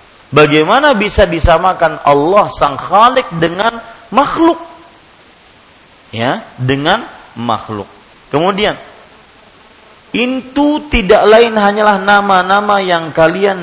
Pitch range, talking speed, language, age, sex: 125-185 Hz, 85 wpm, Malay, 40-59, male